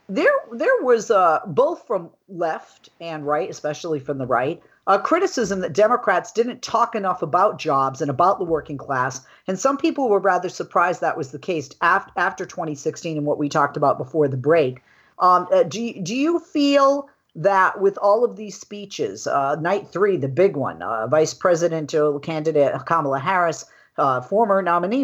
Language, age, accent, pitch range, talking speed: English, 50-69, American, 150-195 Hz, 175 wpm